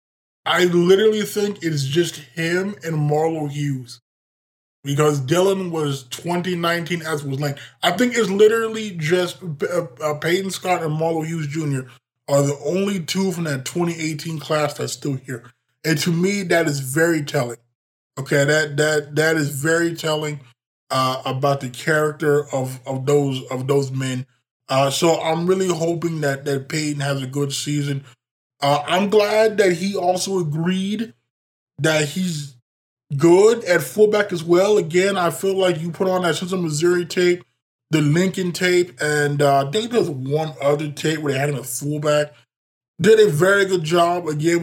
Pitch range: 140-175 Hz